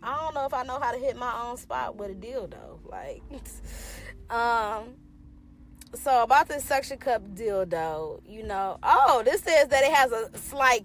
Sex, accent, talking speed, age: female, American, 185 wpm, 20-39